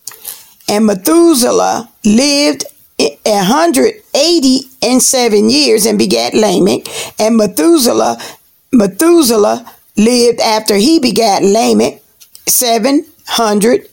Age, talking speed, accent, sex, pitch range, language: 40-59, 95 wpm, American, female, 215-285 Hz, English